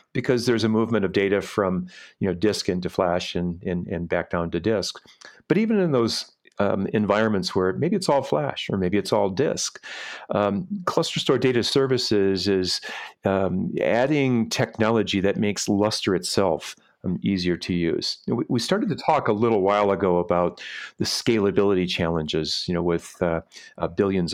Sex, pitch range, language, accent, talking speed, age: male, 90-115 Hz, English, American, 165 wpm, 40-59